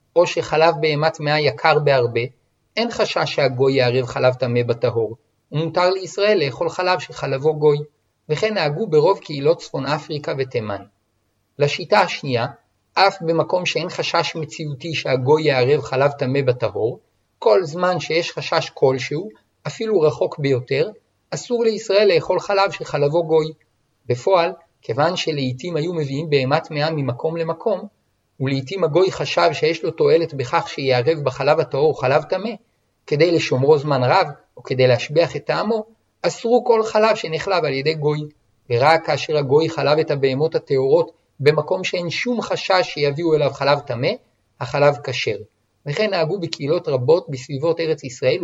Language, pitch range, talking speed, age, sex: Hebrew, 135-175 Hz, 140 wpm, 50-69, male